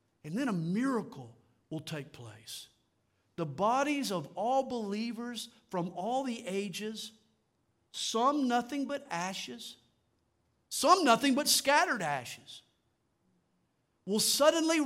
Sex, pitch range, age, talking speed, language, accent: male, 200-275 Hz, 50-69, 110 wpm, English, American